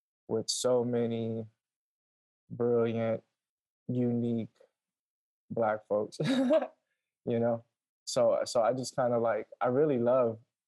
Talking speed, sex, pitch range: 105 wpm, male, 110-120 Hz